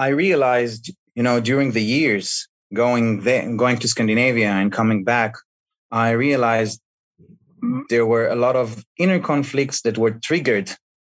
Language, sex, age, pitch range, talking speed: English, male, 30-49, 110-130 Hz, 145 wpm